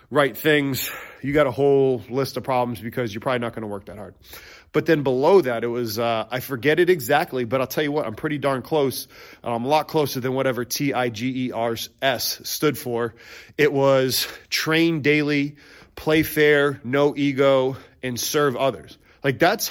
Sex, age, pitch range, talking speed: male, 30-49, 130-155 Hz, 200 wpm